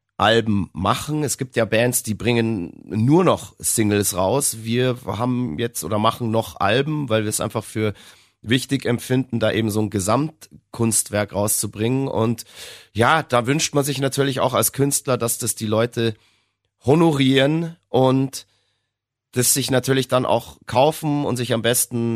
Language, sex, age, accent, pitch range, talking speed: German, male, 30-49, German, 100-125 Hz, 155 wpm